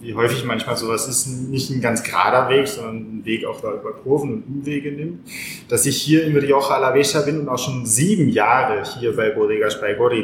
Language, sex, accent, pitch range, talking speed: German, male, German, 115-140 Hz, 210 wpm